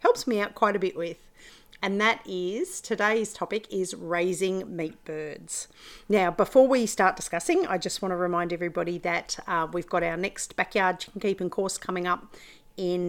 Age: 40-59